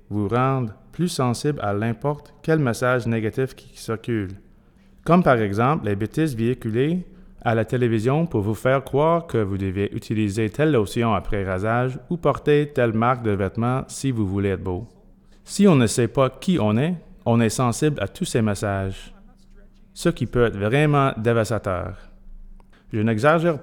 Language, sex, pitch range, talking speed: French, male, 110-150 Hz, 170 wpm